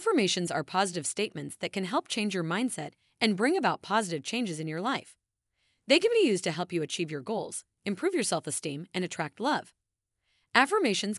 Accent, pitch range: American, 165-240 Hz